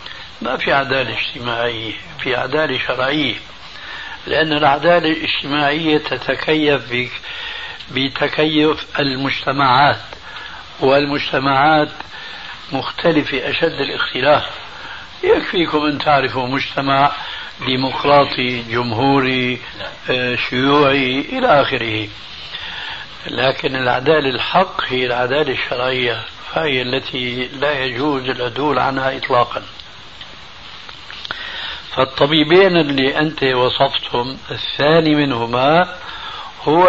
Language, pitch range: Arabic, 125-155 Hz